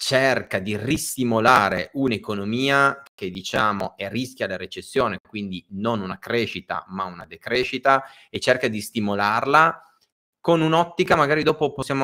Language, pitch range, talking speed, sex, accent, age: Italian, 105-135 Hz, 130 wpm, male, native, 30-49